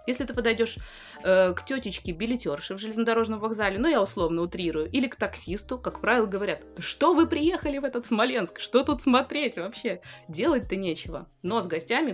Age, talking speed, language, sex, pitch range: 20-39, 175 wpm, Russian, female, 165-220 Hz